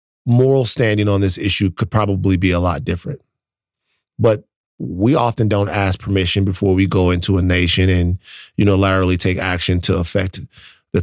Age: 30-49